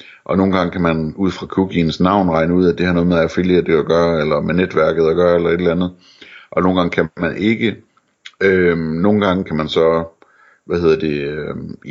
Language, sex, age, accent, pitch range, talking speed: Danish, male, 60-79, native, 80-90 Hz, 220 wpm